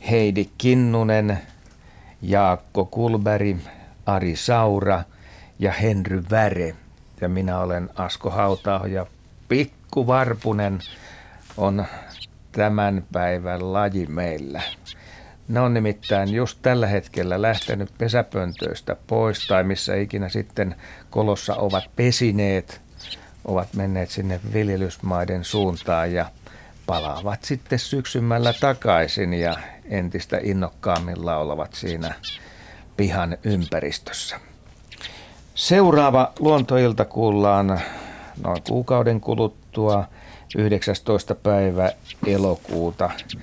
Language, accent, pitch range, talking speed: Finnish, native, 90-110 Hz, 90 wpm